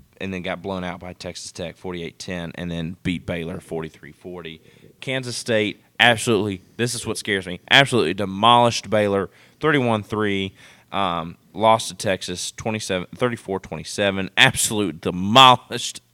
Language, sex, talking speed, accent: English, male, 120 wpm, American